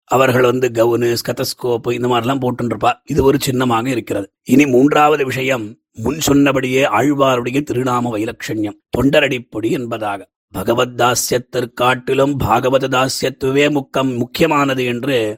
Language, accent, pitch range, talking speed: Tamil, native, 120-135 Hz, 65 wpm